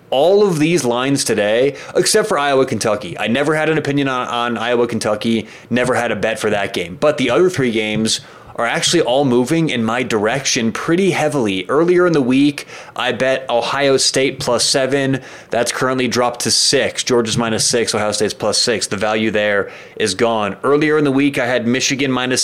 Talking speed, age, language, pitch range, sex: 195 wpm, 30-49, English, 115-140 Hz, male